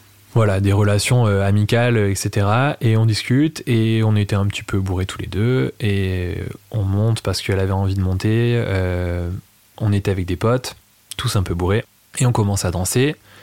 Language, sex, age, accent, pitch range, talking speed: French, male, 20-39, French, 100-115 Hz, 190 wpm